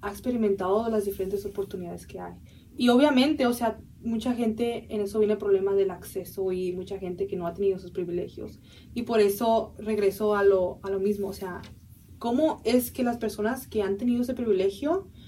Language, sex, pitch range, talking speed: Spanish, female, 195-225 Hz, 195 wpm